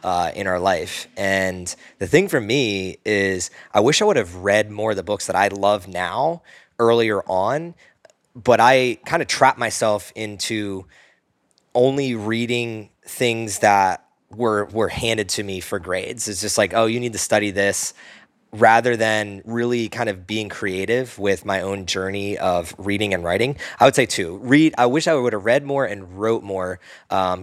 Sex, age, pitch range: male, 20-39, 95-115 Hz